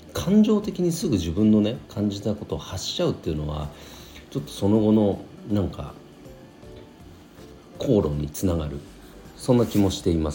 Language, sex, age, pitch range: Japanese, male, 40-59, 75-125 Hz